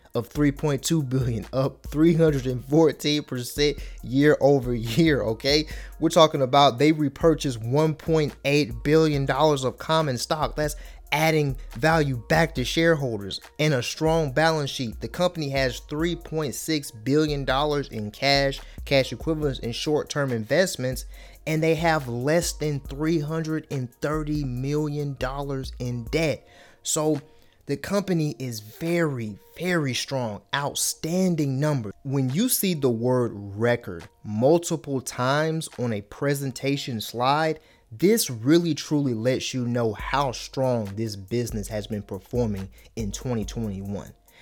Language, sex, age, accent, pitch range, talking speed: English, male, 30-49, American, 120-155 Hz, 125 wpm